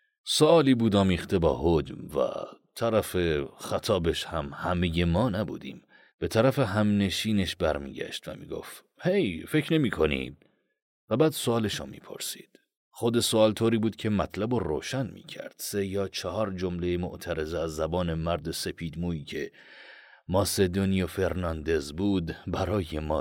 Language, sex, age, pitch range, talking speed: Persian, male, 40-59, 85-115 Hz, 135 wpm